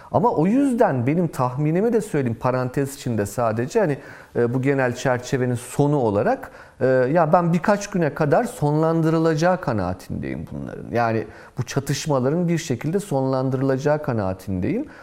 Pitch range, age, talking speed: 120-165 Hz, 40-59, 130 wpm